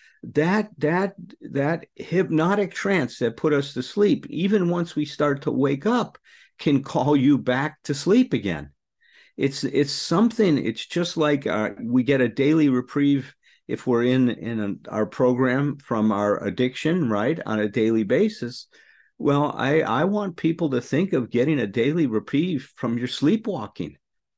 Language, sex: English, male